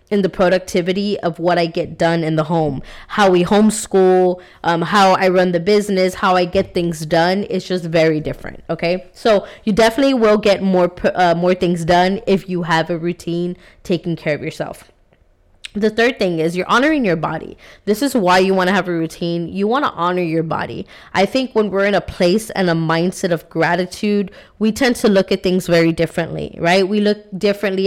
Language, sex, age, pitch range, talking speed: English, female, 20-39, 170-205 Hz, 205 wpm